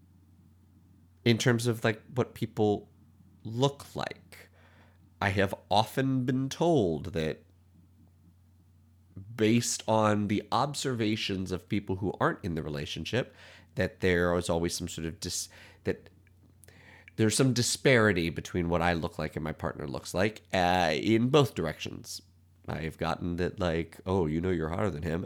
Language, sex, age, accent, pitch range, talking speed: English, male, 30-49, American, 85-105 Hz, 145 wpm